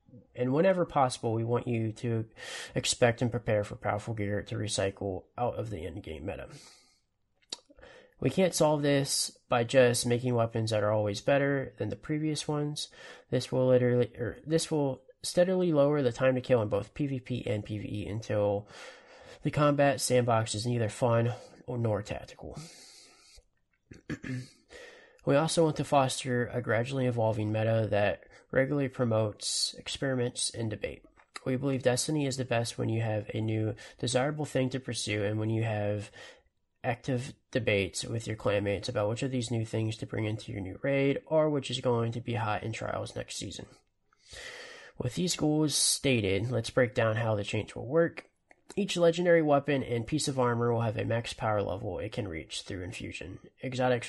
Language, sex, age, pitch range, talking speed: English, male, 20-39, 110-140 Hz, 175 wpm